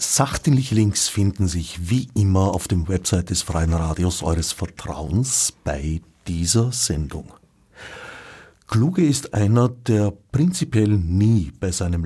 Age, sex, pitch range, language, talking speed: 50-69, male, 90-115 Hz, German, 120 wpm